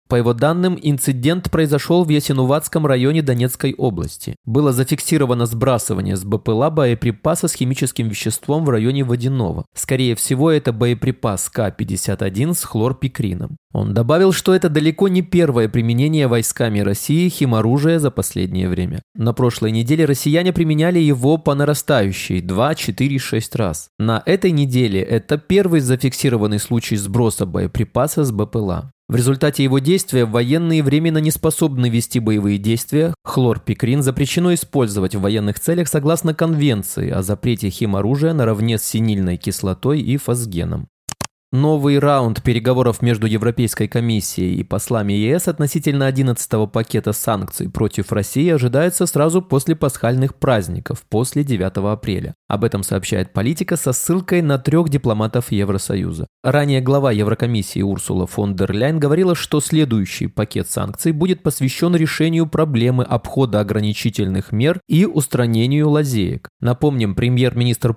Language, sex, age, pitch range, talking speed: Russian, male, 20-39, 110-150 Hz, 130 wpm